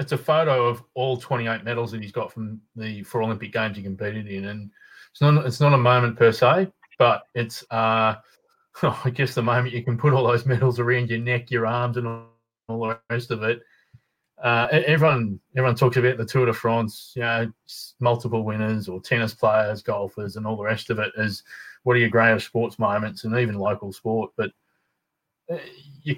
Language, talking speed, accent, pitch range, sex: English, 200 wpm, Australian, 110-130 Hz, male